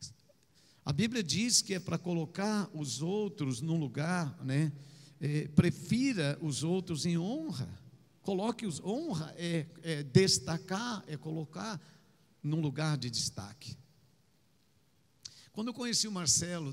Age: 60-79